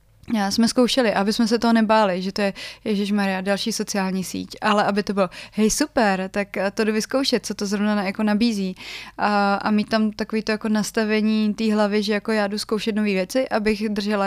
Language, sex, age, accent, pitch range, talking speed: Czech, female, 20-39, native, 200-220 Hz, 205 wpm